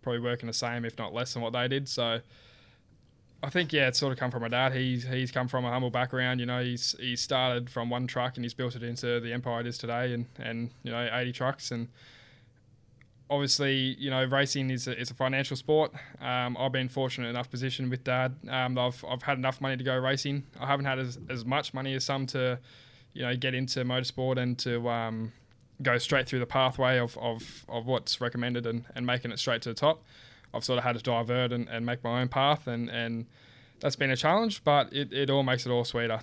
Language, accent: English, Australian